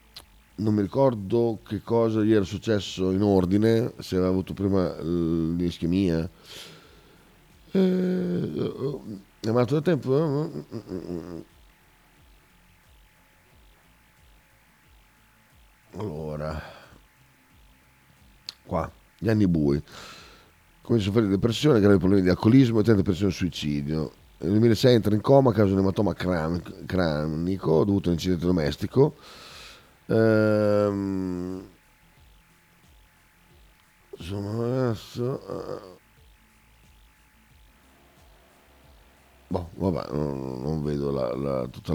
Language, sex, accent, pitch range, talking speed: Italian, male, native, 80-110 Hz, 90 wpm